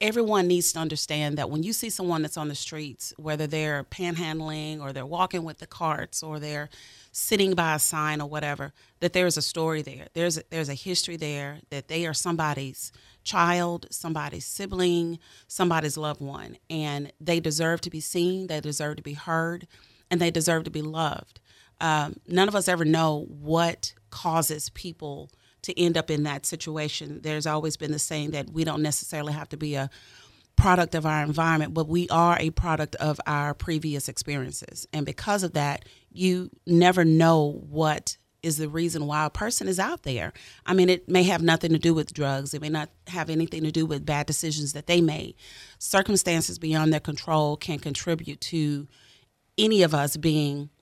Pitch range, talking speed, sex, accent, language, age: 145-170 Hz, 190 wpm, female, American, English, 30-49